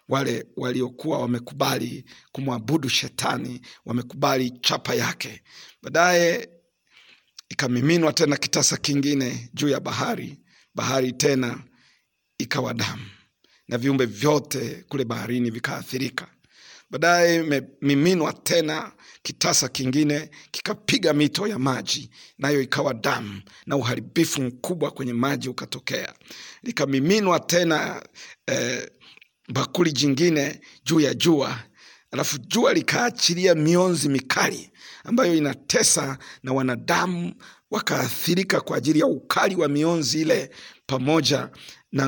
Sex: male